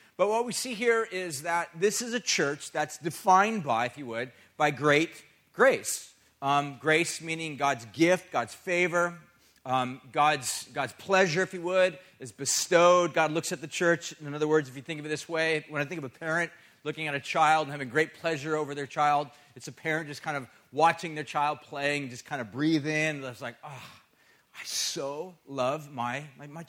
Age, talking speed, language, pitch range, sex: 40-59, 210 wpm, English, 145-180 Hz, male